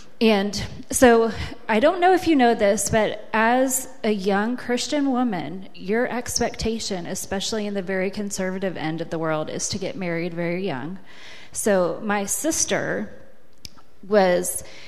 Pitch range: 190-250 Hz